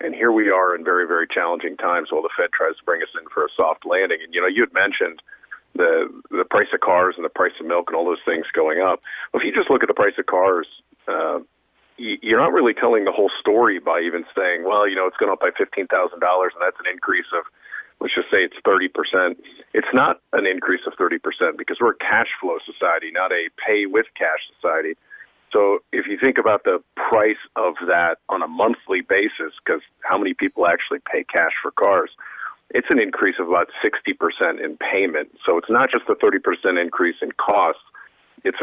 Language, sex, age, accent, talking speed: English, male, 40-59, American, 220 wpm